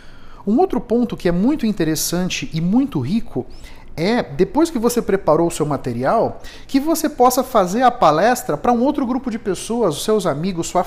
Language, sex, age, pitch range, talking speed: Portuguese, male, 50-69, 170-225 Hz, 190 wpm